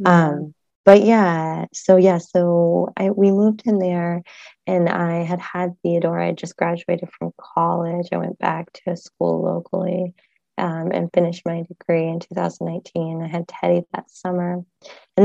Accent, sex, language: American, female, English